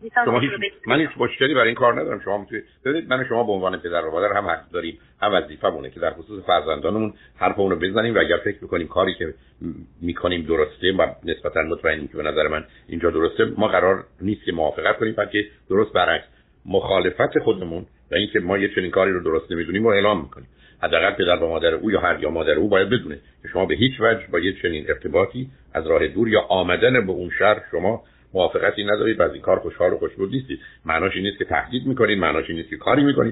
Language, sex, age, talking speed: Persian, male, 60-79, 220 wpm